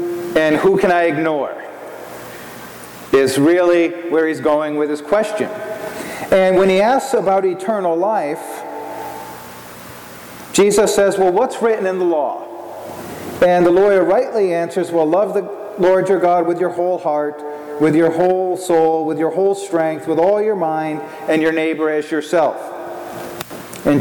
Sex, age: male, 40-59